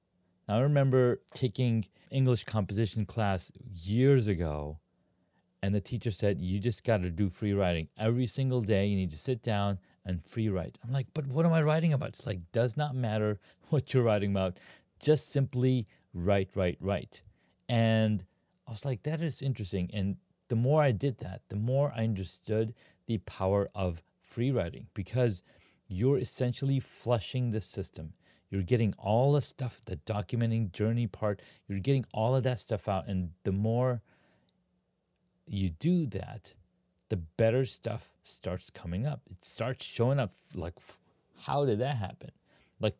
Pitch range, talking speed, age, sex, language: 95-125 Hz, 165 wpm, 40-59, male, English